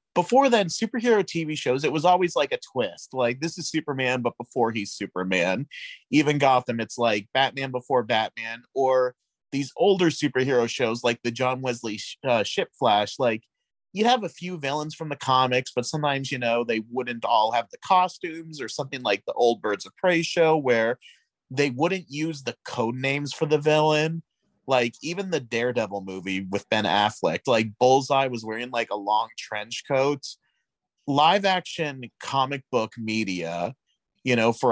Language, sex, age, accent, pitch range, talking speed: English, male, 30-49, American, 115-150 Hz, 175 wpm